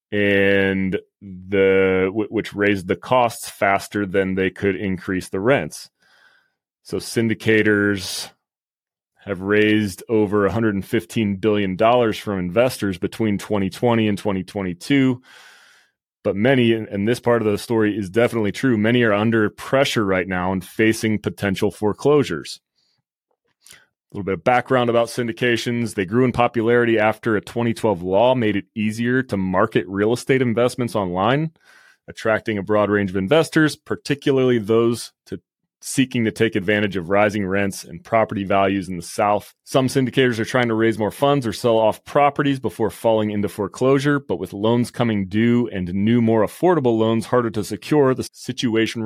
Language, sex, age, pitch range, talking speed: English, male, 30-49, 100-120 Hz, 150 wpm